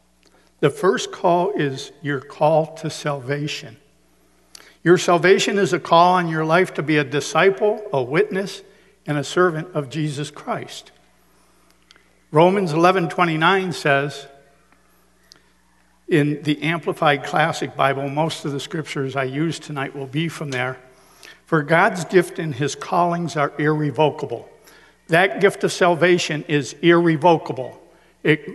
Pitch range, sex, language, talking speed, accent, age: 145-175 Hz, male, English, 130 wpm, American, 60-79